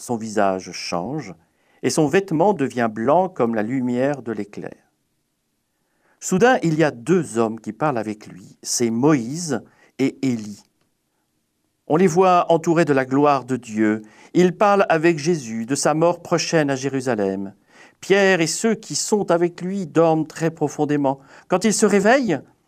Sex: male